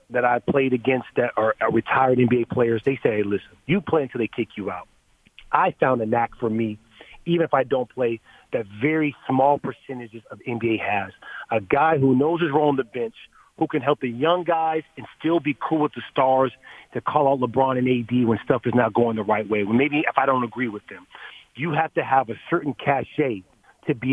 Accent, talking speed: American, 220 wpm